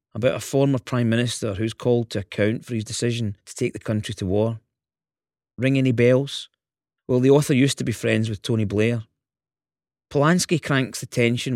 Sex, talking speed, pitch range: male, 180 wpm, 110-125 Hz